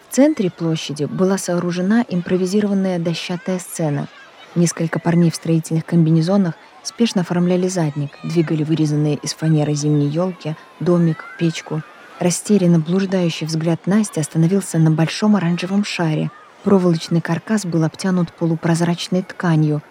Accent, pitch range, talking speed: native, 165-220 Hz, 120 wpm